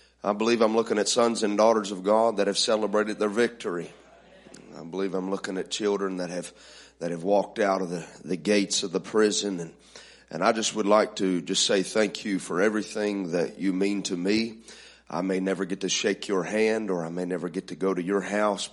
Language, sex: English, male